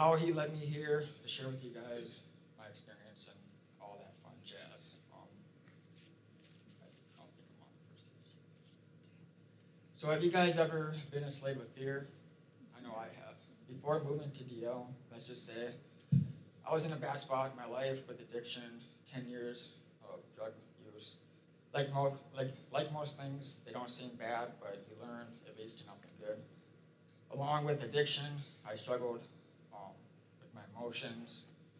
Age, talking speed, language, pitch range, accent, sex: 20-39, 155 wpm, English, 125-160 Hz, American, male